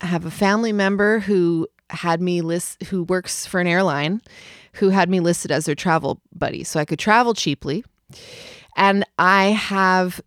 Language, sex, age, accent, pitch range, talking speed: English, female, 20-39, American, 165-235 Hz, 175 wpm